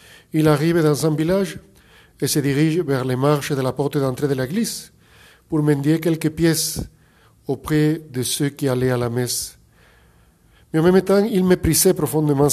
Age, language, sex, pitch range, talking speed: 50-69, French, male, 125-160 Hz, 170 wpm